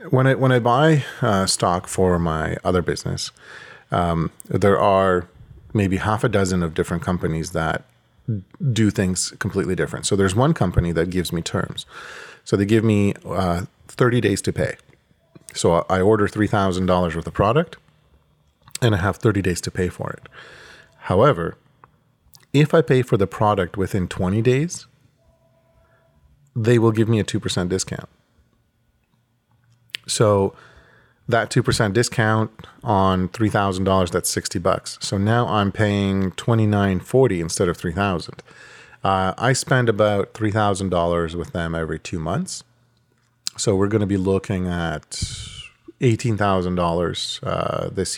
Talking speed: 140 wpm